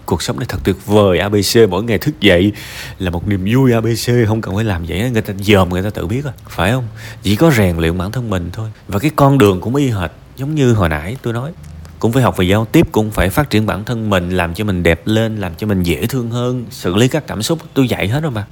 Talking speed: 280 wpm